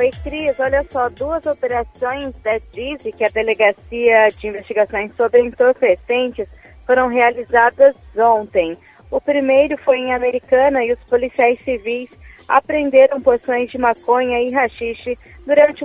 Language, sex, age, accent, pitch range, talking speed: Portuguese, female, 20-39, Brazilian, 225-270 Hz, 130 wpm